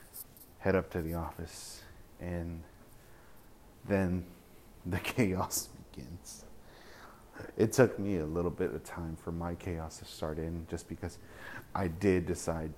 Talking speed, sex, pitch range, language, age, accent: 135 wpm, male, 80-95 Hz, English, 30-49, American